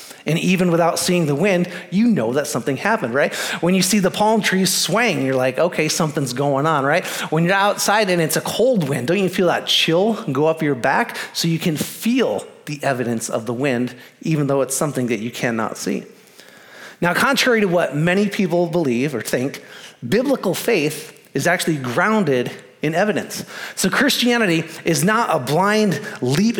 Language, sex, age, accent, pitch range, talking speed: English, male, 30-49, American, 145-195 Hz, 185 wpm